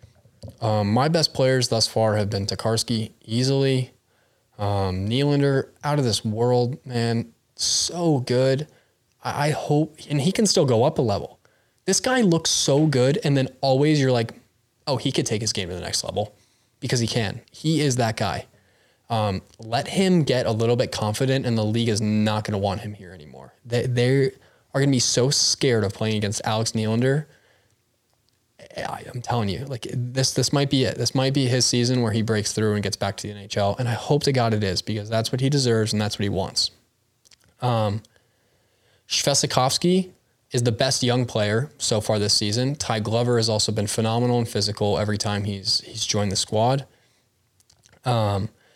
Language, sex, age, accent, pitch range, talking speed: English, male, 10-29, American, 110-130 Hz, 195 wpm